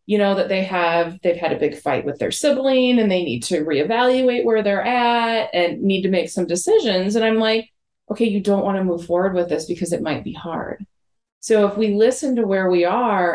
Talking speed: 235 wpm